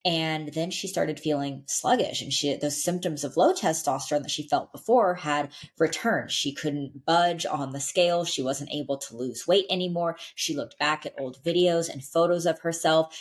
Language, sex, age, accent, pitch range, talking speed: English, female, 20-39, American, 135-160 Hz, 185 wpm